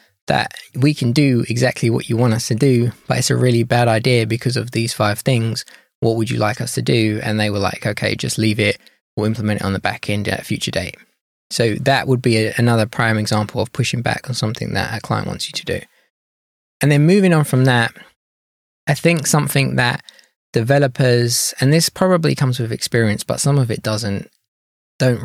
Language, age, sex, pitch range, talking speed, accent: English, 20-39, male, 105-130 Hz, 215 wpm, British